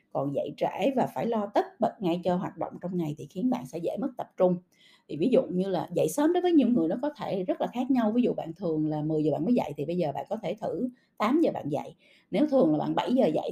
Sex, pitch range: female, 165-250 Hz